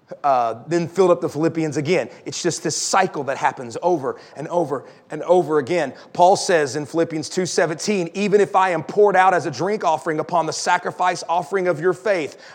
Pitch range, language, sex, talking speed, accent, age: 150-200 Hz, English, male, 195 wpm, American, 30-49